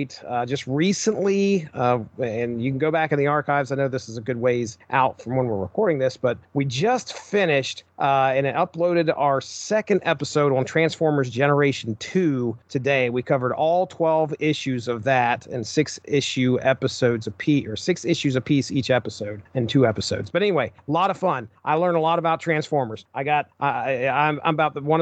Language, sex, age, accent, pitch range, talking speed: English, male, 40-59, American, 130-165 Hz, 195 wpm